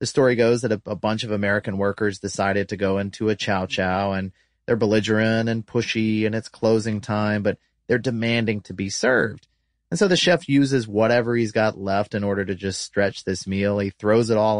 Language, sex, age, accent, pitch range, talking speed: English, male, 30-49, American, 105-125 Hz, 215 wpm